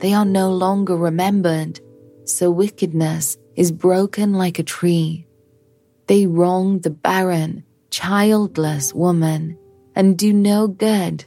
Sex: female